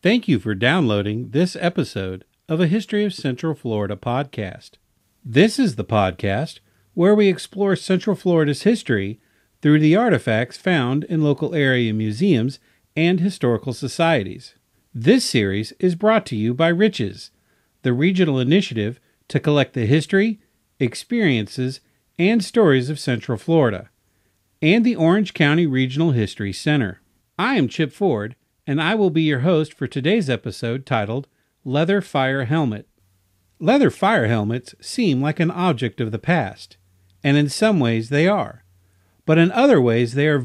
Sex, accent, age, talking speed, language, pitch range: male, American, 50-69, 150 wpm, English, 110-170 Hz